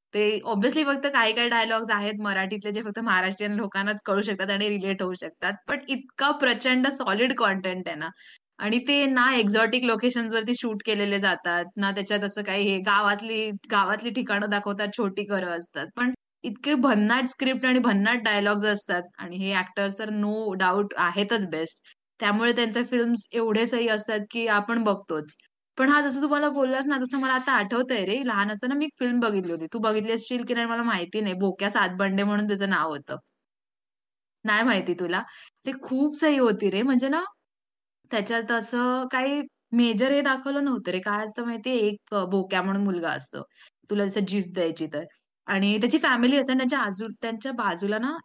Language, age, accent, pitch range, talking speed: Marathi, 20-39, native, 200-245 Hz, 175 wpm